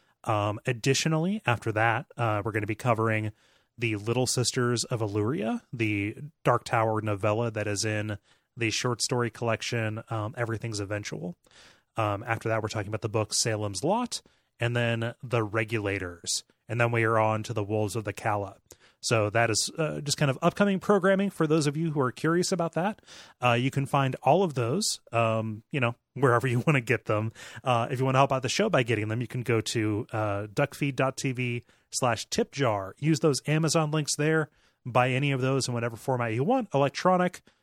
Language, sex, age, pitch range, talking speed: English, male, 30-49, 110-135 Hz, 195 wpm